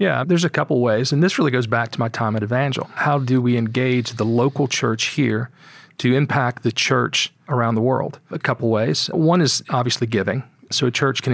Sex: male